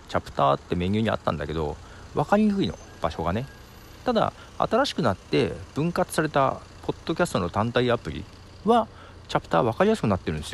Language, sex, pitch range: Japanese, male, 80-125 Hz